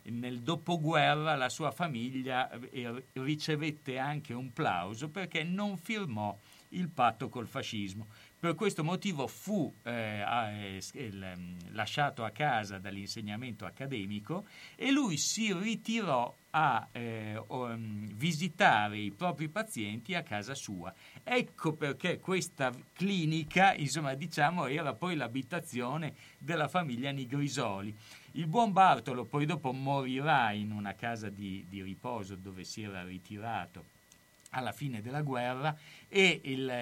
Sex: male